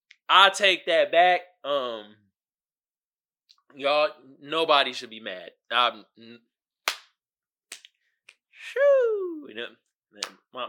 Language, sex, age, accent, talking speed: English, male, 20-39, American, 90 wpm